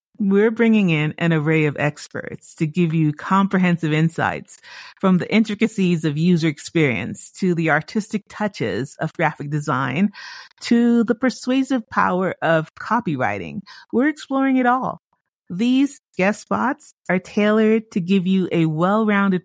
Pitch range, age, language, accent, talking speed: 155-215 Hz, 40-59, English, American, 140 wpm